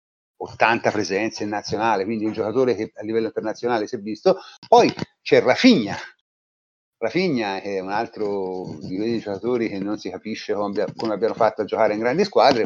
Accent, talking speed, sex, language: native, 170 wpm, male, Italian